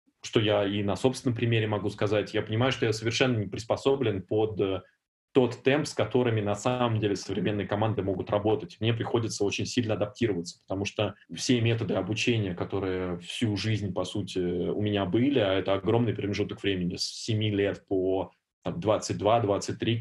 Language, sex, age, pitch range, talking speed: English, male, 20-39, 100-120 Hz, 165 wpm